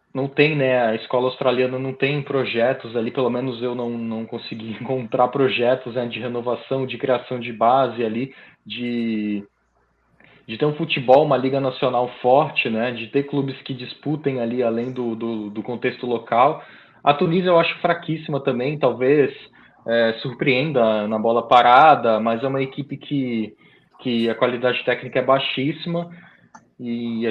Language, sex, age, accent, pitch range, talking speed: Portuguese, male, 20-39, Brazilian, 115-135 Hz, 160 wpm